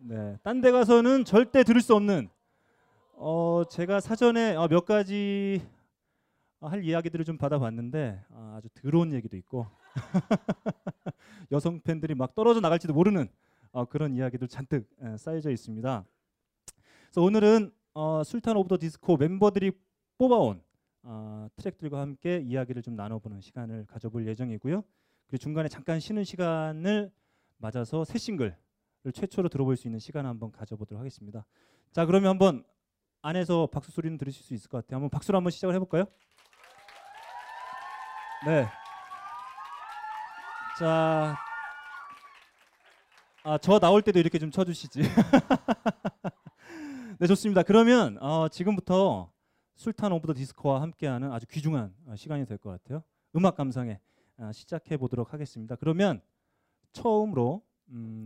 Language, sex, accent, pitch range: Korean, male, native, 125-195 Hz